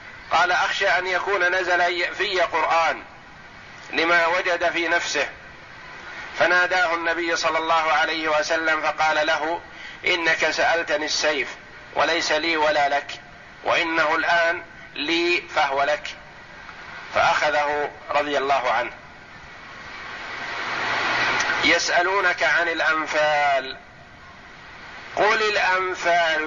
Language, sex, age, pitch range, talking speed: Arabic, male, 50-69, 140-165 Hz, 90 wpm